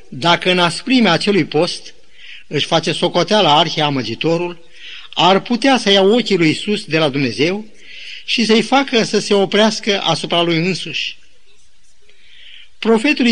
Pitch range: 170-225 Hz